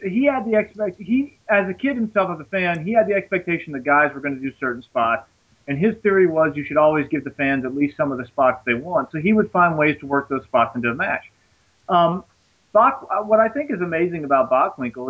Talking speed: 255 wpm